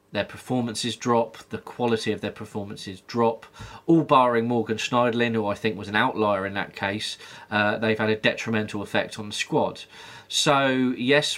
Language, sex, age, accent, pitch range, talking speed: English, male, 20-39, British, 110-130 Hz, 175 wpm